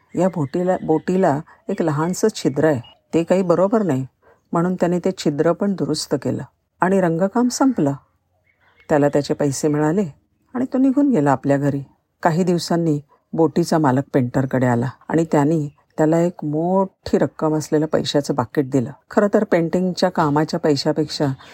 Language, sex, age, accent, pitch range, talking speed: Marathi, female, 50-69, native, 145-195 Hz, 150 wpm